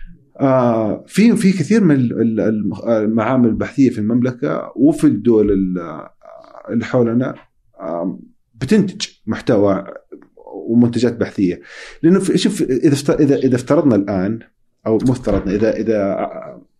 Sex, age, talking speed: male, 40-59, 100 wpm